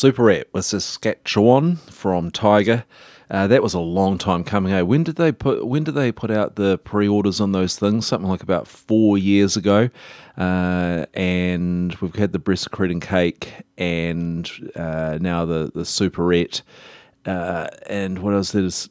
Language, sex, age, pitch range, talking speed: English, male, 30-49, 85-100 Hz, 165 wpm